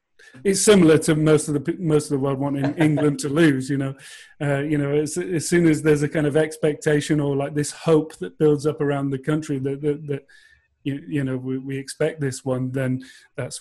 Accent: British